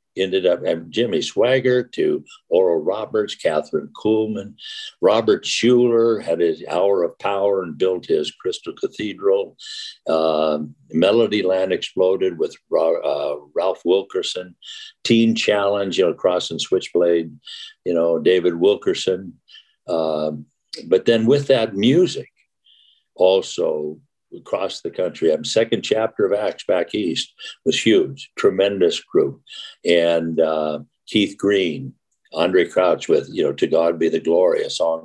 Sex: male